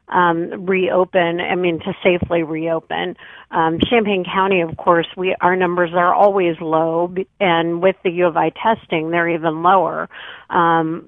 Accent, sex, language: American, female, English